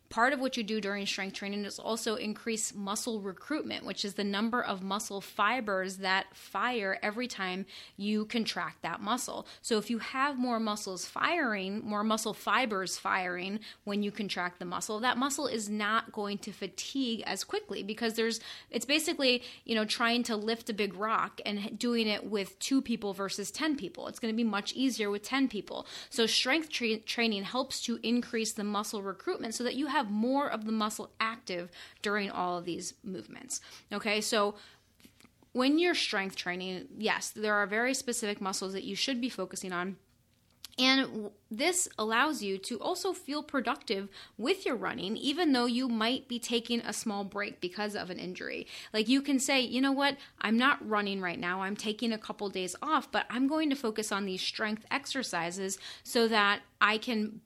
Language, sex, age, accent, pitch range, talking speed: English, female, 20-39, American, 200-245 Hz, 190 wpm